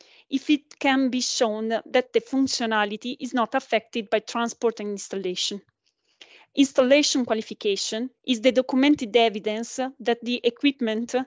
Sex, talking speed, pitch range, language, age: female, 130 wpm, 225-265 Hz, English, 30-49